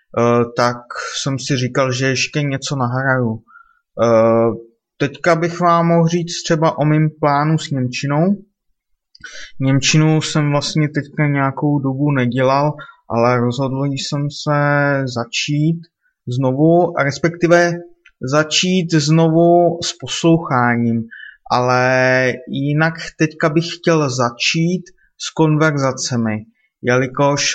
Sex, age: male, 20-39